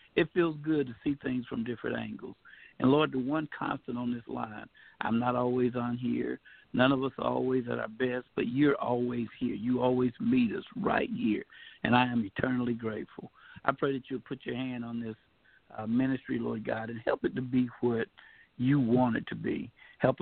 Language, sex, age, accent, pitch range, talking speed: English, male, 60-79, American, 115-135 Hz, 210 wpm